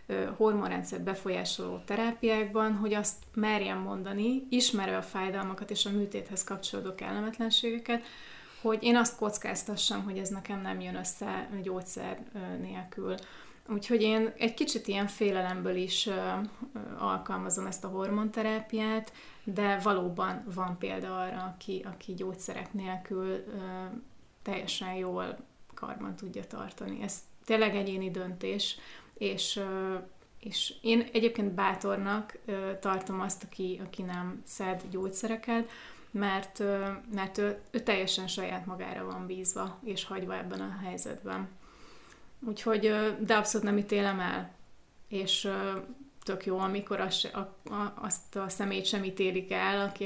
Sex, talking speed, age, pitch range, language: female, 125 wpm, 30-49, 185-215 Hz, Hungarian